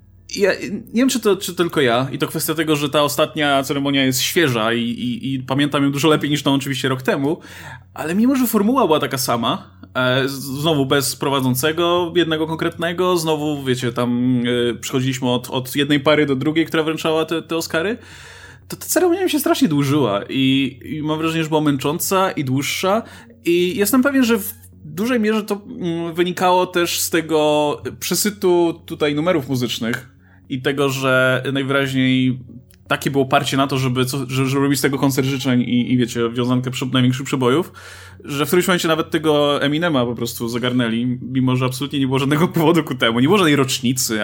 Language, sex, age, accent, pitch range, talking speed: Polish, male, 20-39, native, 125-160 Hz, 180 wpm